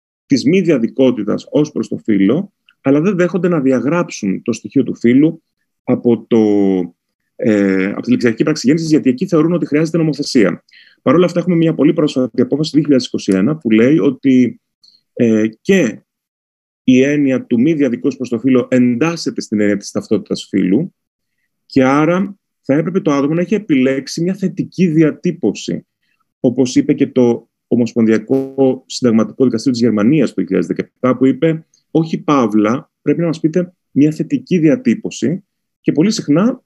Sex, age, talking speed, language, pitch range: male, 30-49, 155 wpm, Greek, 120-170 Hz